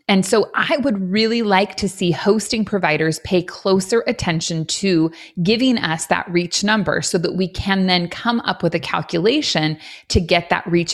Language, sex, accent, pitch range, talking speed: English, female, American, 165-215 Hz, 180 wpm